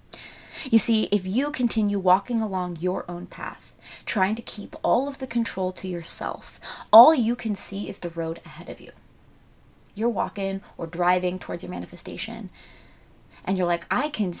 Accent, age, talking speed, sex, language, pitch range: American, 20-39, 170 wpm, female, English, 185-225 Hz